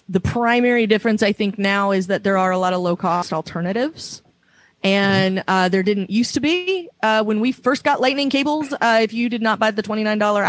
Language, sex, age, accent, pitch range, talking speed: English, female, 30-49, American, 180-210 Hz, 215 wpm